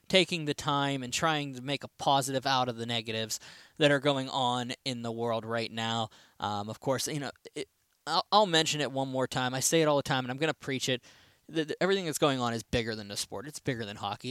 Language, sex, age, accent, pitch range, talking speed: English, male, 10-29, American, 120-150 Hz, 250 wpm